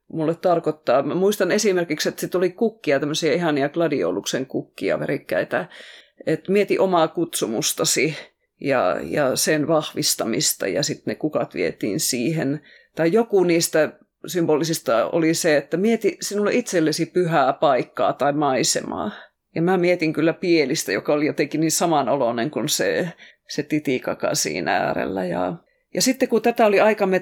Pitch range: 155-185 Hz